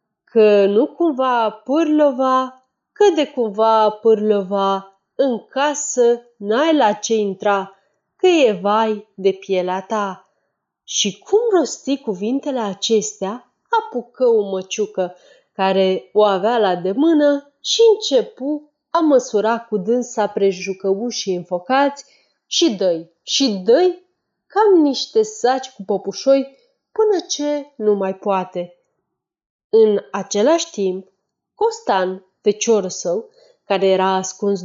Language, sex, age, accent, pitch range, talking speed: Romanian, female, 30-49, native, 195-285 Hz, 115 wpm